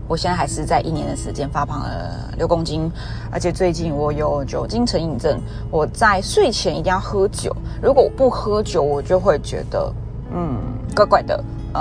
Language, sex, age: Chinese, female, 20-39